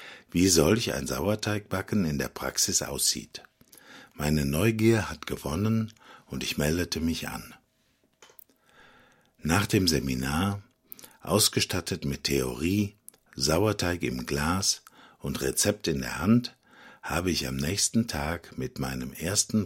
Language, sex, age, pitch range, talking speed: Slovak, male, 60-79, 70-100 Hz, 120 wpm